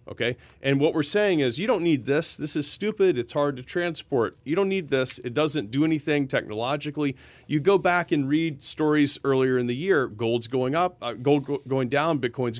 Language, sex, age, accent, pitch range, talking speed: English, male, 40-59, American, 120-150 Hz, 215 wpm